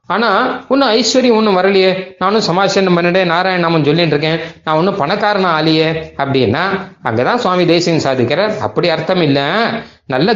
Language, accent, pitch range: Tamil, native, 155-195 Hz